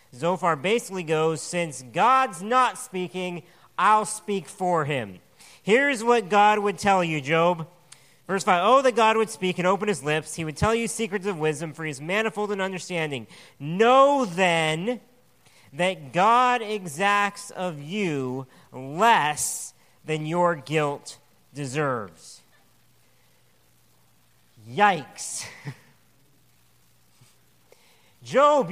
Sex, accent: male, American